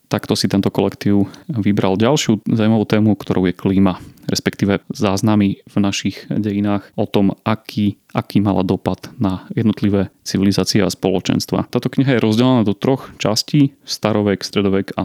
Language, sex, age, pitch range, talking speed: Slovak, male, 30-49, 100-120 Hz, 150 wpm